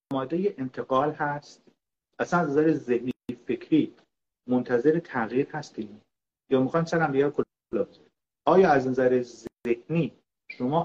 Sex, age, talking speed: male, 40-59, 115 wpm